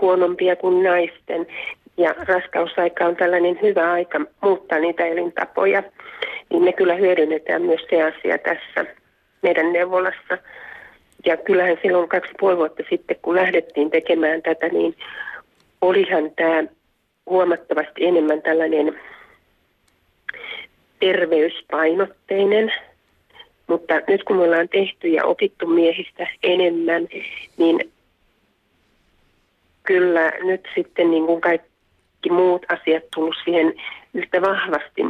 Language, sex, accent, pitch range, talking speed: Finnish, female, native, 165-195 Hz, 105 wpm